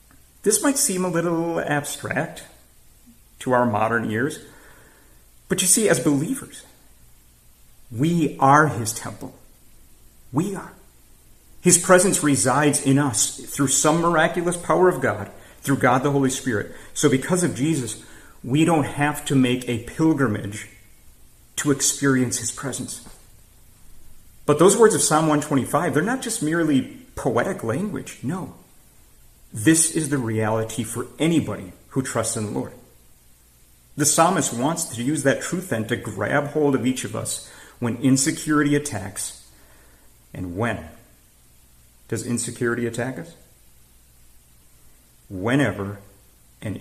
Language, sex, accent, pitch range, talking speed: English, male, American, 100-150 Hz, 130 wpm